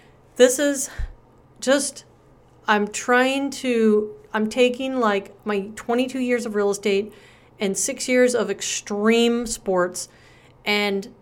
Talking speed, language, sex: 120 wpm, English, female